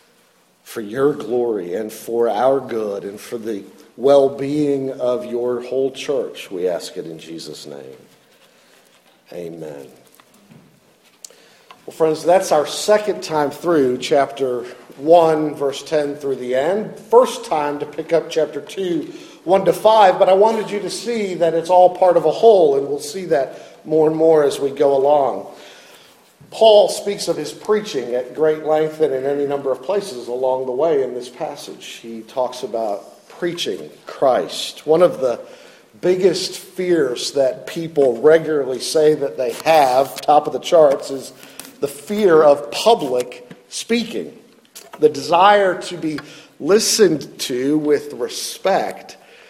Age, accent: 50-69, American